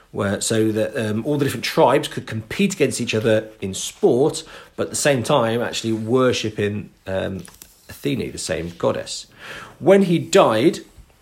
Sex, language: male, English